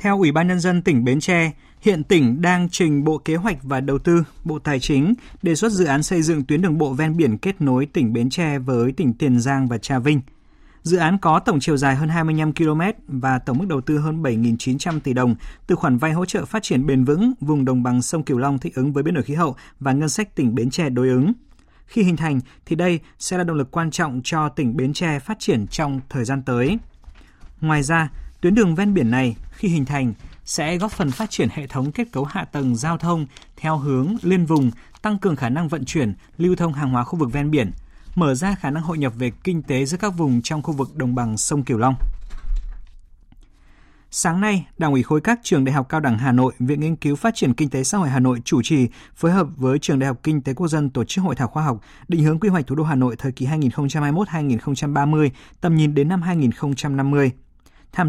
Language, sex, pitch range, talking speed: Vietnamese, male, 130-170 Hz, 240 wpm